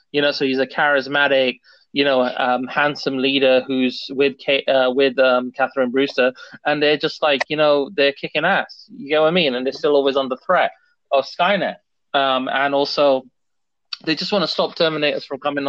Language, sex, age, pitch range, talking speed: English, male, 30-49, 130-150 Hz, 200 wpm